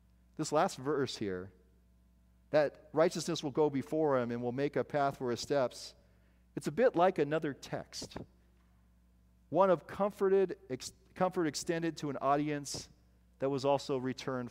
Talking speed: 145 wpm